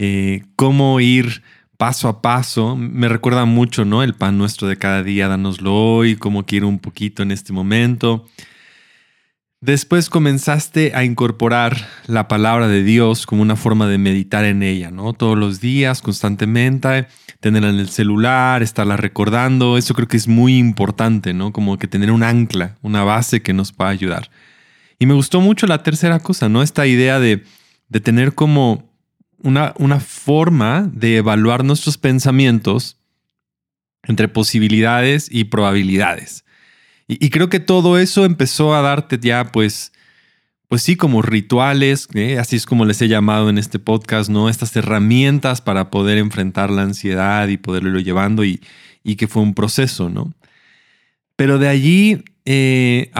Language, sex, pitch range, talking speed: Spanish, male, 105-135 Hz, 160 wpm